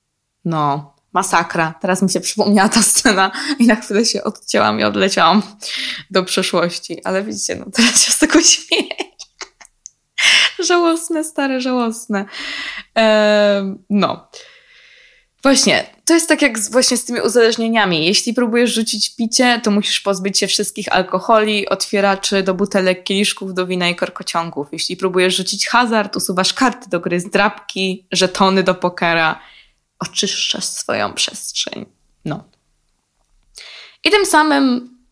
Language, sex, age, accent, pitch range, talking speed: Polish, female, 20-39, native, 185-240 Hz, 135 wpm